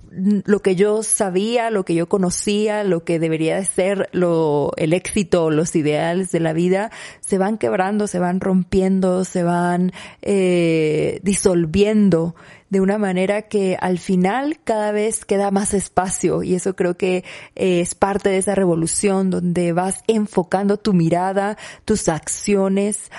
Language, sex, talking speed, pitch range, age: Spanish, female, 150 wpm, 180-205 Hz, 30-49